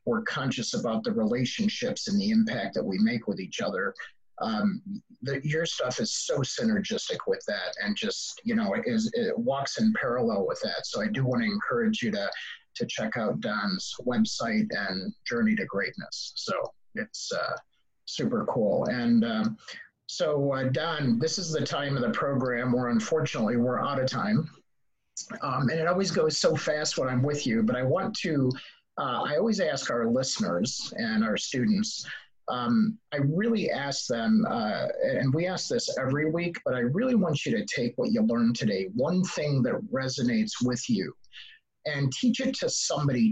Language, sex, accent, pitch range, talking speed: English, male, American, 145-230 Hz, 185 wpm